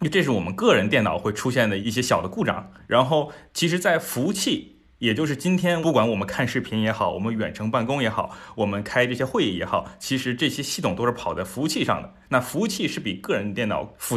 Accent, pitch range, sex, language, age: native, 110-135 Hz, male, Chinese, 20-39